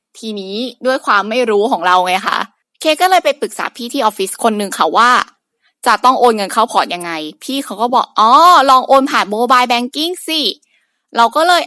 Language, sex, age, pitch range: Thai, female, 20-39, 205-260 Hz